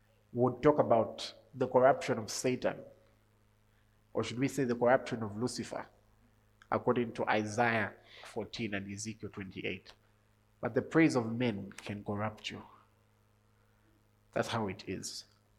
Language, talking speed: English, 135 wpm